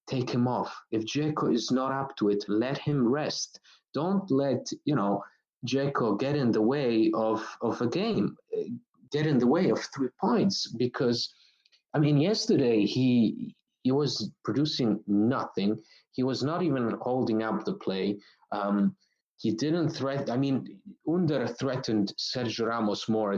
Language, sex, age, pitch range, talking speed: English, male, 30-49, 105-145 Hz, 155 wpm